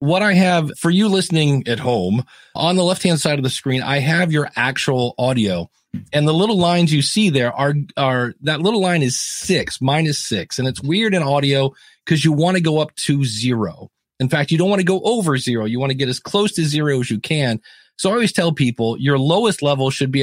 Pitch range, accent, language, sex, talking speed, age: 125-160 Hz, American, English, male, 235 wpm, 40-59